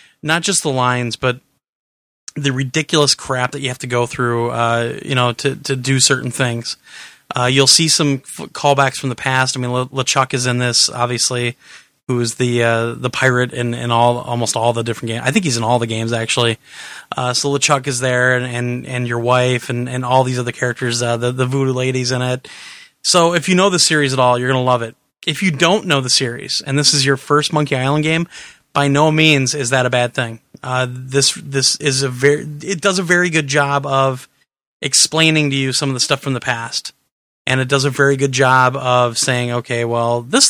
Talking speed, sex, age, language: 230 wpm, male, 30-49, English